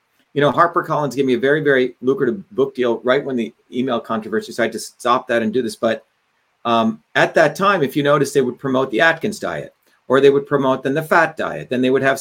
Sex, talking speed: male, 245 wpm